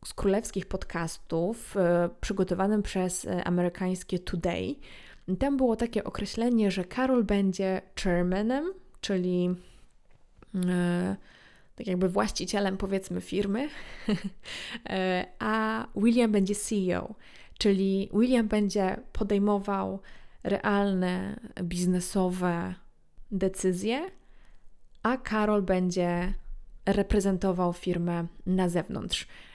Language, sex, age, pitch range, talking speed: Polish, female, 20-39, 180-215 Hz, 80 wpm